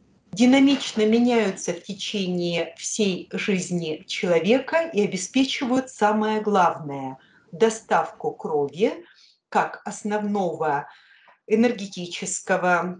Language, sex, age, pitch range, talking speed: Russian, female, 40-59, 175-245 Hz, 75 wpm